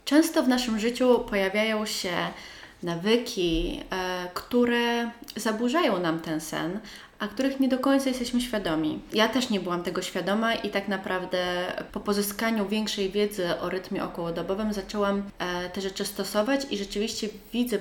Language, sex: Polish, female